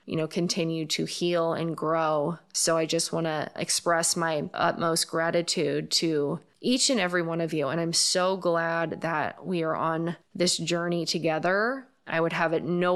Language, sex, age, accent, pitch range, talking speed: English, female, 20-39, American, 165-200 Hz, 180 wpm